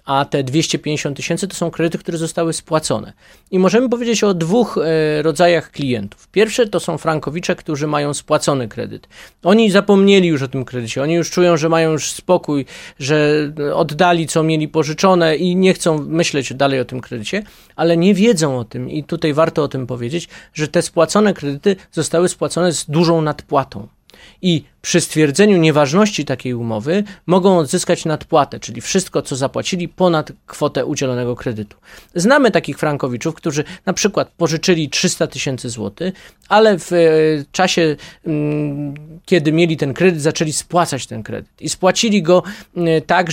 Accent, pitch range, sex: native, 145-180 Hz, male